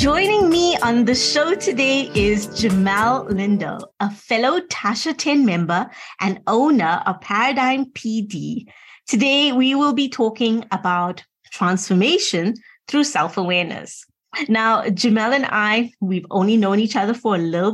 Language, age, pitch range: English, 20-39, 195-260 Hz